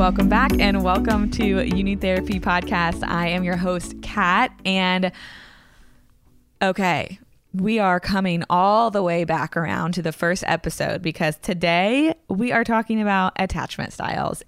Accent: American